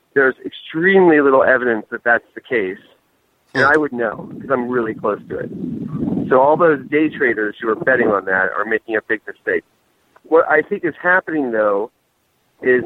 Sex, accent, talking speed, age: male, American, 185 wpm, 50-69